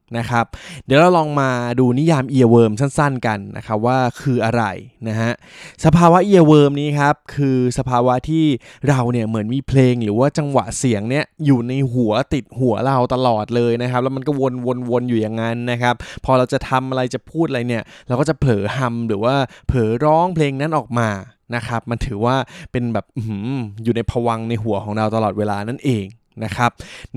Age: 20-39